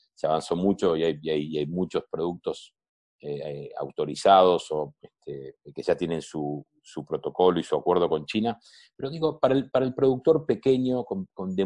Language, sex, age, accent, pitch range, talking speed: Spanish, male, 40-59, Argentinian, 90-120 Hz, 155 wpm